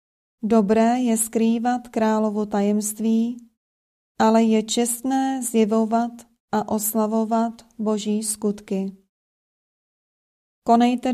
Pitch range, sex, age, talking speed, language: 210-235 Hz, female, 30-49, 75 wpm, Czech